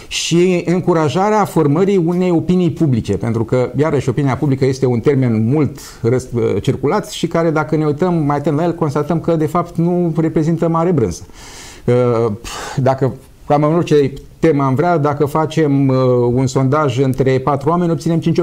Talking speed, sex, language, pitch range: 160 wpm, male, Romanian, 120-160 Hz